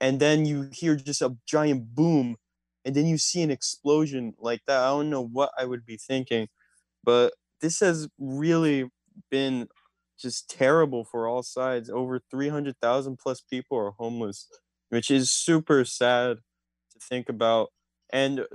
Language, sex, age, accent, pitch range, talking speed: English, male, 20-39, American, 115-135 Hz, 150 wpm